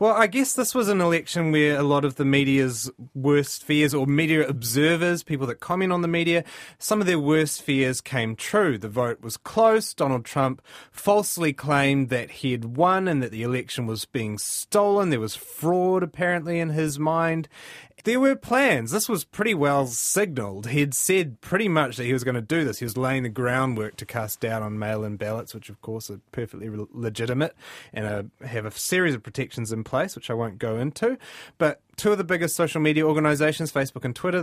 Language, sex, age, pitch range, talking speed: English, male, 30-49, 120-165 Hz, 210 wpm